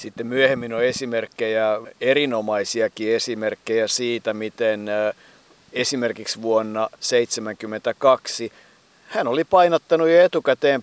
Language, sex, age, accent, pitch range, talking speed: Finnish, male, 50-69, native, 110-135 Hz, 90 wpm